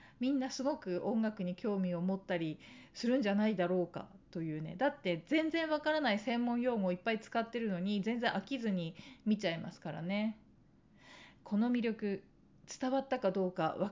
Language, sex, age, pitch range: Japanese, female, 40-59, 175-225 Hz